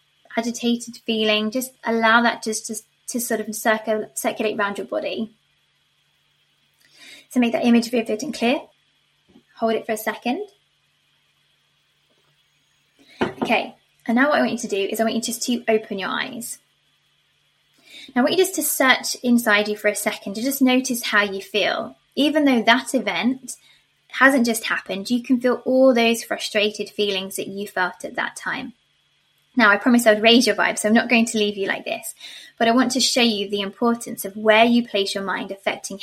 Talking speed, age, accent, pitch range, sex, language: 190 wpm, 20-39, British, 210-250 Hz, female, English